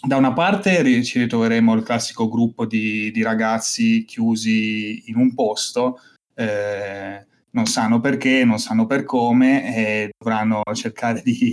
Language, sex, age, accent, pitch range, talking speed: Italian, male, 20-39, native, 105-145 Hz, 140 wpm